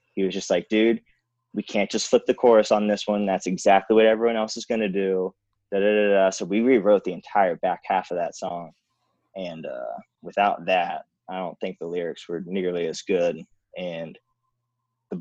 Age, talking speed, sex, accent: 20-39, 205 wpm, male, American